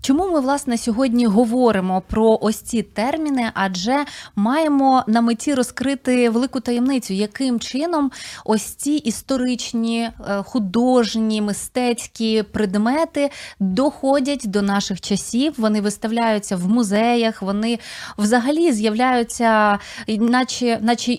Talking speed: 105 wpm